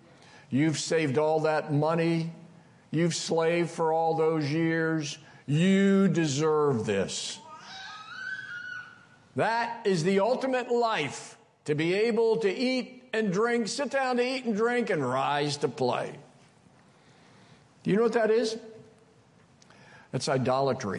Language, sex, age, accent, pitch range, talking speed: English, male, 50-69, American, 155-225 Hz, 125 wpm